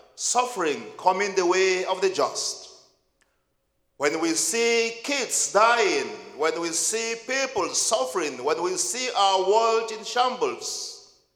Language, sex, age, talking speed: English, male, 50-69, 125 wpm